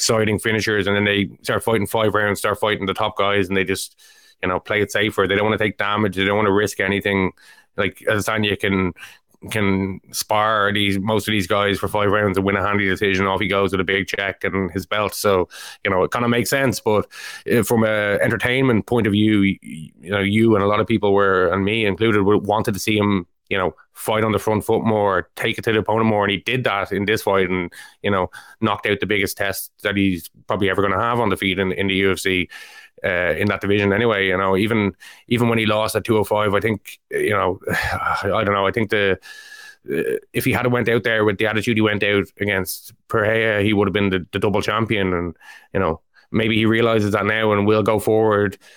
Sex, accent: male, Irish